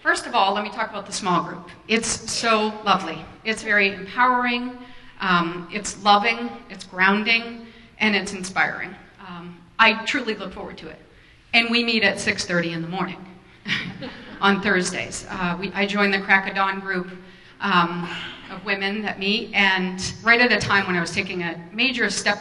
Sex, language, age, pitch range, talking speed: female, English, 40-59, 180-220 Hz, 175 wpm